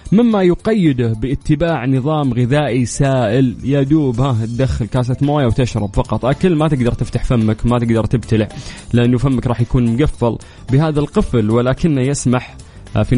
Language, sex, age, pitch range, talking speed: English, male, 20-39, 120-150 Hz, 140 wpm